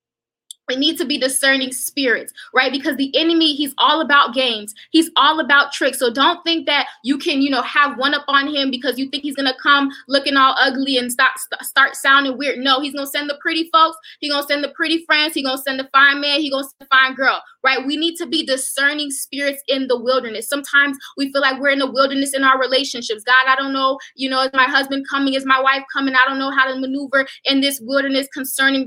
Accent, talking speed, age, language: American, 250 wpm, 20-39, English